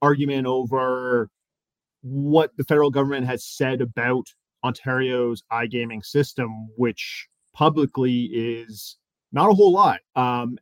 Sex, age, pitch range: male, 30-49, 125-145 Hz